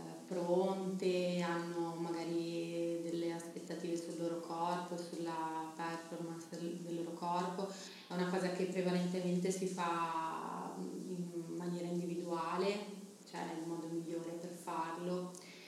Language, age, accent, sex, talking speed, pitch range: Italian, 30-49, native, female, 115 wpm, 170-185 Hz